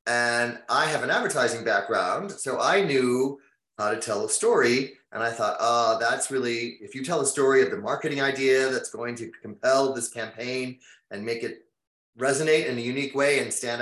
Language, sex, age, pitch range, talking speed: English, male, 30-49, 120-155 Hz, 195 wpm